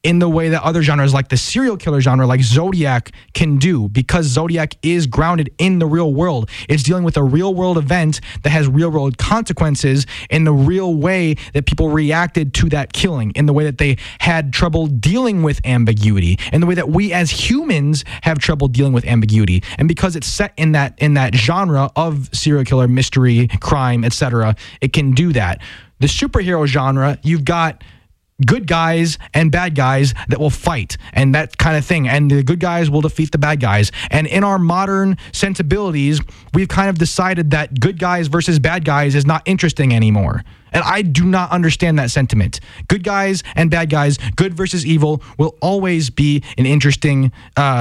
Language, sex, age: English, male, 20-39